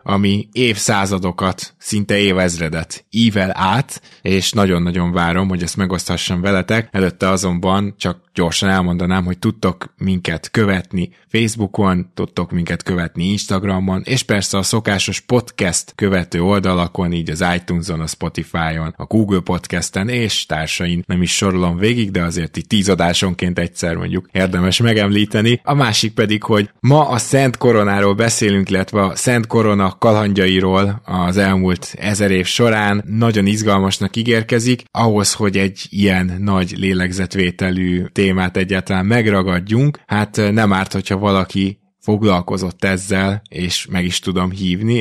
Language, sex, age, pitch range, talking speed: Hungarian, male, 20-39, 90-105 Hz, 135 wpm